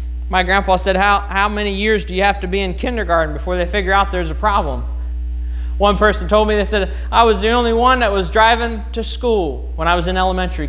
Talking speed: 235 wpm